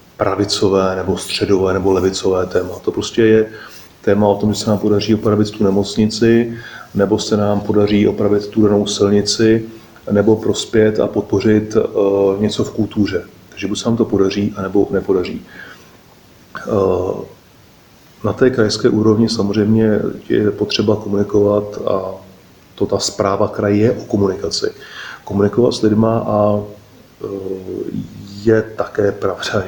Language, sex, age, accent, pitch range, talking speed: Czech, male, 30-49, native, 95-105 Hz, 140 wpm